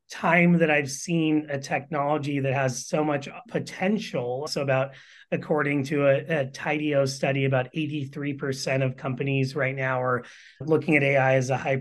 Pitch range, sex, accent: 135-155 Hz, male, American